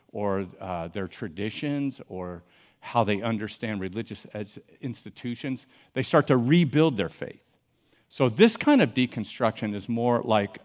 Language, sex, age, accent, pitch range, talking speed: English, male, 50-69, American, 105-140 Hz, 135 wpm